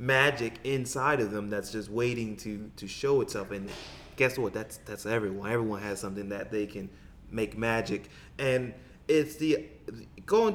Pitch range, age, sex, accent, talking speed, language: 100-130 Hz, 20-39, male, American, 165 wpm, English